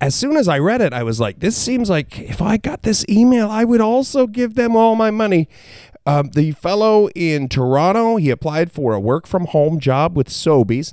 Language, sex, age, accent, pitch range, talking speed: English, male, 40-59, American, 115-185 Hz, 220 wpm